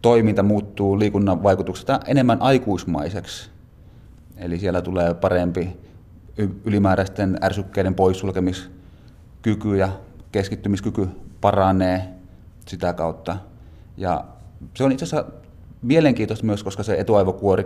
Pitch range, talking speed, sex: 90-105 Hz, 95 wpm, male